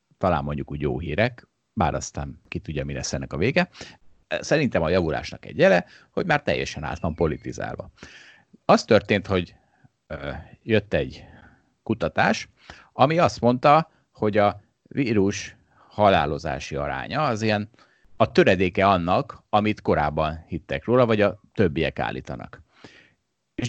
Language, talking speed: Hungarian, 130 wpm